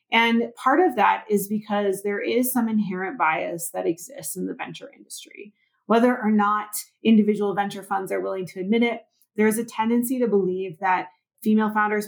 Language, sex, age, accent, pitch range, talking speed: English, female, 30-49, American, 190-230 Hz, 180 wpm